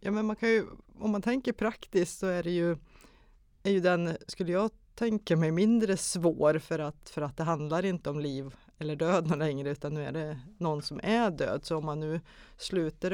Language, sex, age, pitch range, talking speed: Swedish, female, 30-49, 145-185 Hz, 215 wpm